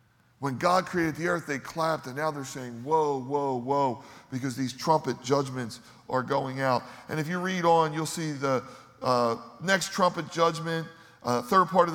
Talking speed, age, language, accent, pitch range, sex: 185 wpm, 40-59, English, American, 140-175 Hz, male